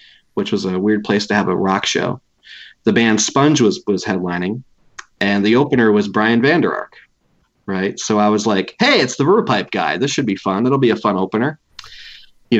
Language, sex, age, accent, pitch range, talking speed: English, male, 30-49, American, 105-125 Hz, 215 wpm